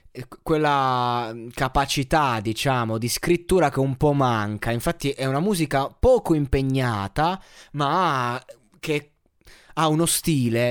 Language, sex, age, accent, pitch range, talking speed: Italian, male, 20-39, native, 120-160 Hz, 110 wpm